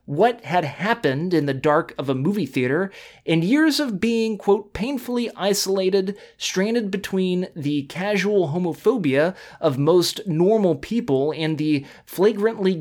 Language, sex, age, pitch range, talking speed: English, male, 30-49, 150-205 Hz, 135 wpm